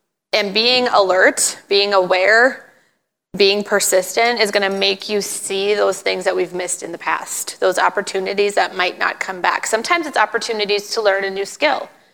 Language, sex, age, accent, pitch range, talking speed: English, female, 20-39, American, 195-230 Hz, 180 wpm